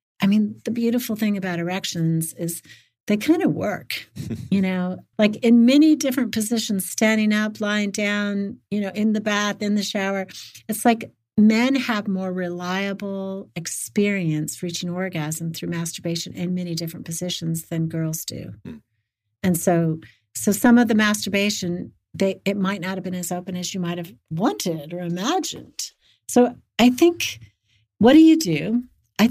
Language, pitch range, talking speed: English, 165-210 Hz, 160 wpm